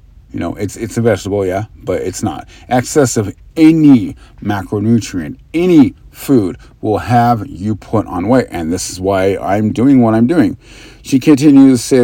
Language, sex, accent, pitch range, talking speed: English, male, American, 95-120 Hz, 175 wpm